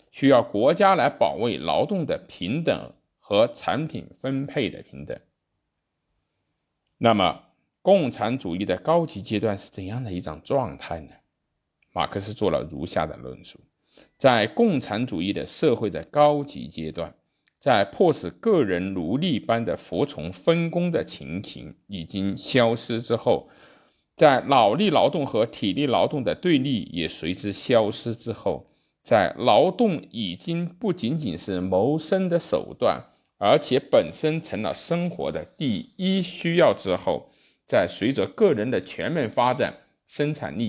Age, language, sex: 50-69, Chinese, male